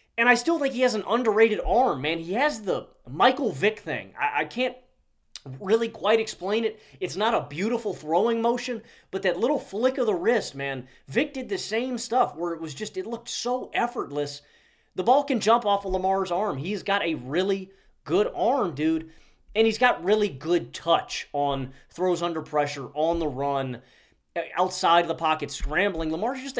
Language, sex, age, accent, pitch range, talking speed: English, male, 30-49, American, 160-230 Hz, 190 wpm